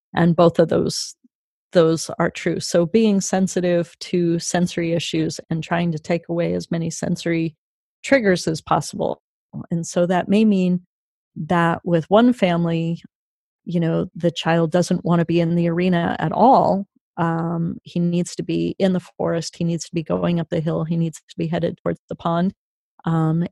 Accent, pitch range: American, 170-185 Hz